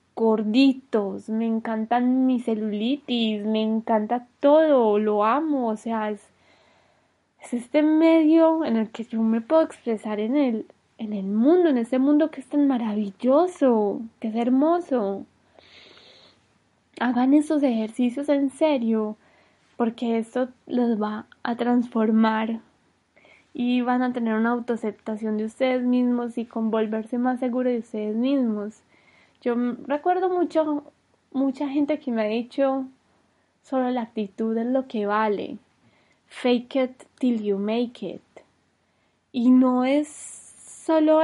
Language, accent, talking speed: Spanish, Colombian, 135 wpm